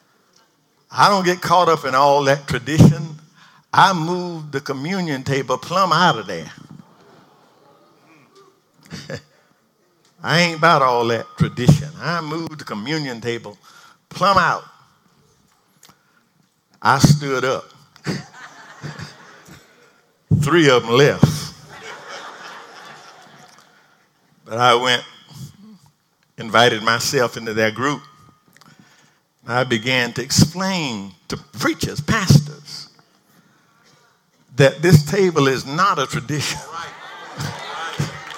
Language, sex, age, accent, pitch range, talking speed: English, male, 50-69, American, 135-165 Hz, 95 wpm